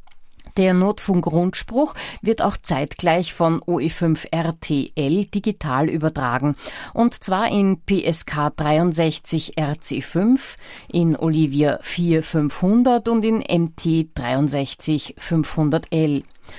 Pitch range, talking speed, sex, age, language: 150-200 Hz, 70 wpm, female, 50-69, German